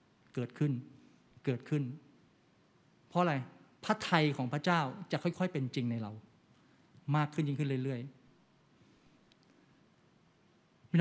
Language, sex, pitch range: Thai, male, 130-165 Hz